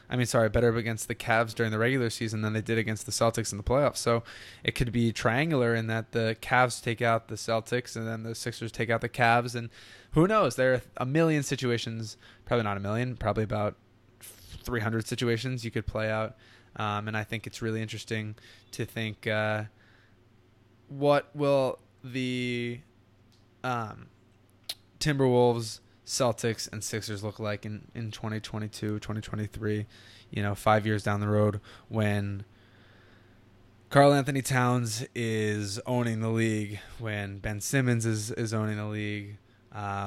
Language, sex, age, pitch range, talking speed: English, male, 20-39, 105-120 Hz, 165 wpm